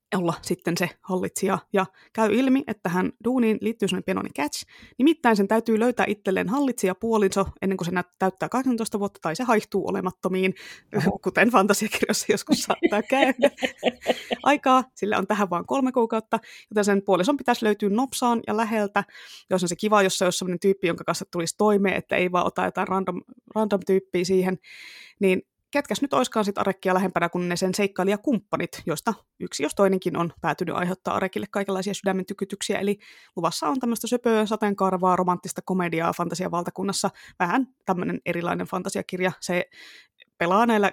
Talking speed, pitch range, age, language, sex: 160 wpm, 180-220 Hz, 20-39, Finnish, female